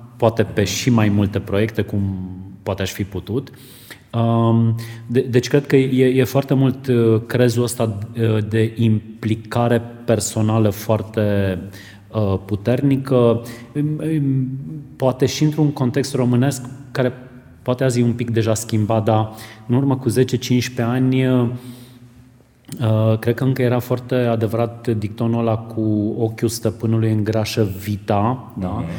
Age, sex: 30-49, male